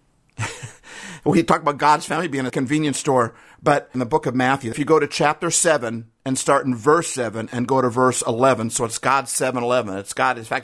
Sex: male